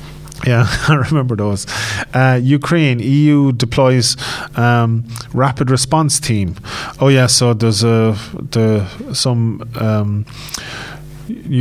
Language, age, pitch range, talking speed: English, 20-39, 110-130 Hz, 105 wpm